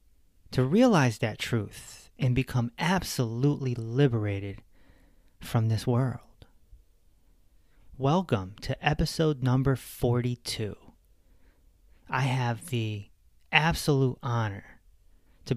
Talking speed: 85 wpm